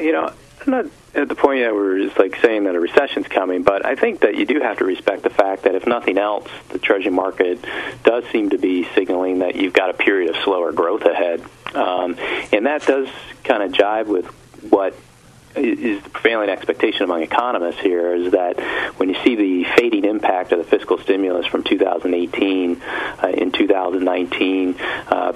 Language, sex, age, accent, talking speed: English, male, 40-59, American, 190 wpm